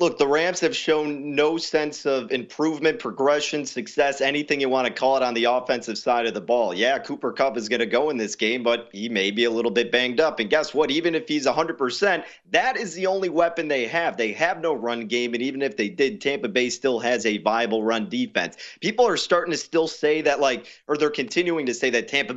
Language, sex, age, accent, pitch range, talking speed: English, male, 30-49, American, 120-170 Hz, 240 wpm